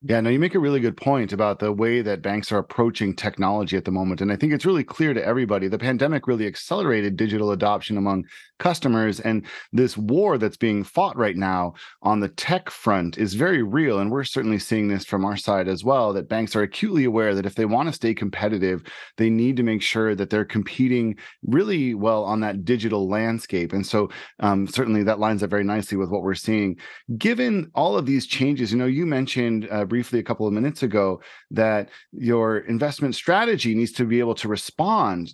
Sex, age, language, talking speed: male, 30-49, English, 210 wpm